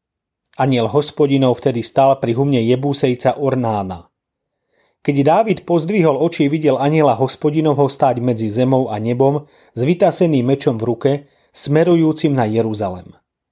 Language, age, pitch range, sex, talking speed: Slovak, 40-59, 120-155 Hz, male, 130 wpm